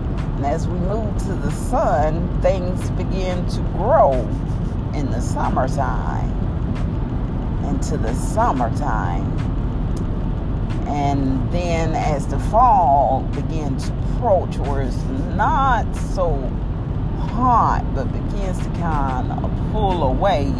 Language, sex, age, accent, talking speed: English, female, 40-59, American, 110 wpm